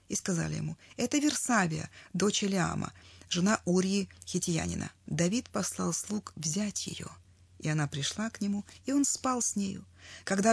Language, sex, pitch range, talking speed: Russian, female, 160-215 Hz, 150 wpm